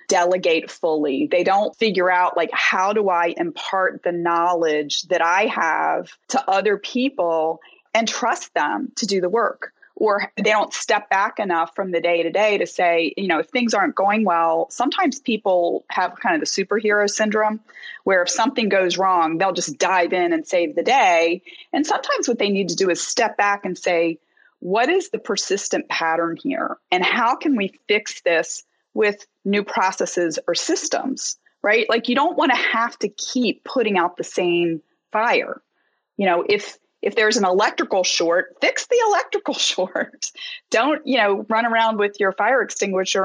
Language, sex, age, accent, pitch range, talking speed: English, female, 30-49, American, 175-240 Hz, 180 wpm